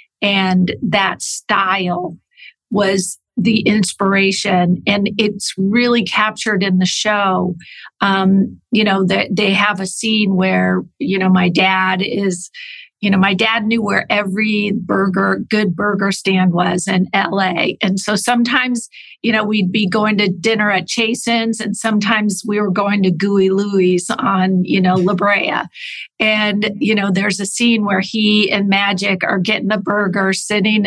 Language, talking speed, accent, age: English, 160 wpm, American, 50-69